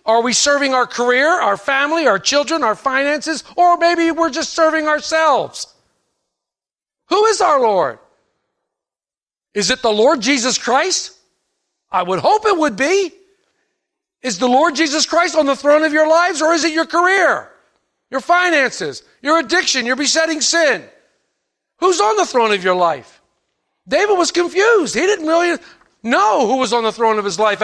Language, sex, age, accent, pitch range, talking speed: English, male, 50-69, American, 275-365 Hz, 170 wpm